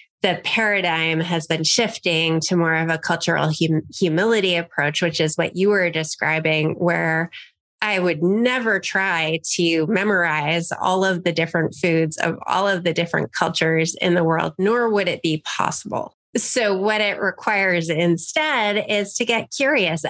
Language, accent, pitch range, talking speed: English, American, 170-205 Hz, 160 wpm